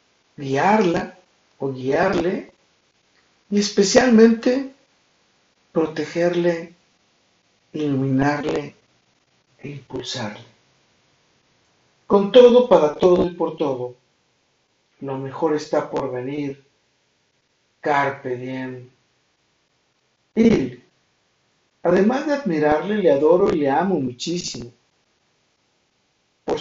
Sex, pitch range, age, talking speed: male, 140-190 Hz, 50-69, 75 wpm